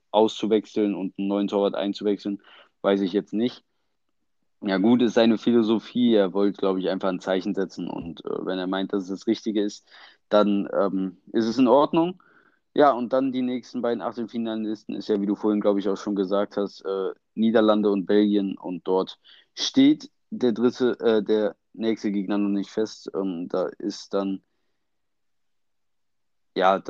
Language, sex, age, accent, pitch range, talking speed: German, male, 20-39, German, 100-115 Hz, 175 wpm